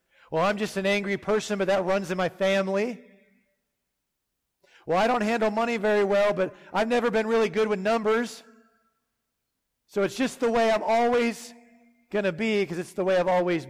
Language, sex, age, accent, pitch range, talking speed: English, male, 40-59, American, 155-200 Hz, 190 wpm